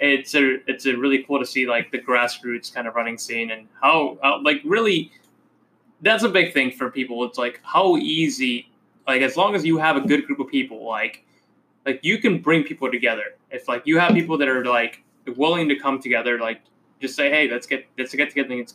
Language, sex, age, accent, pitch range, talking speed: English, male, 20-39, American, 125-160 Hz, 225 wpm